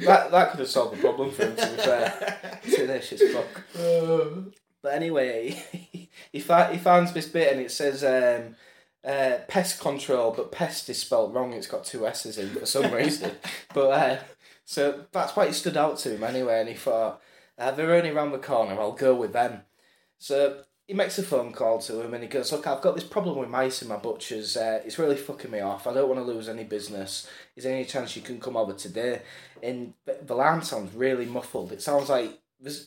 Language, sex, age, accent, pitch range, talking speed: English, male, 10-29, British, 130-215 Hz, 225 wpm